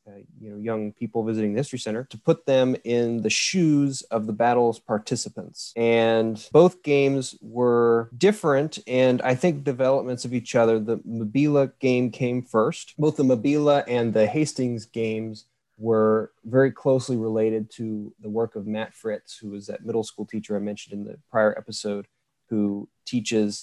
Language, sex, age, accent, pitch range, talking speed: English, male, 20-39, American, 110-135 Hz, 170 wpm